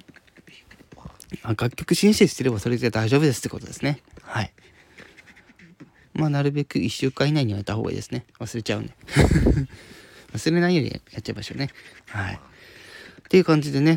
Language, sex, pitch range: Japanese, male, 110-155 Hz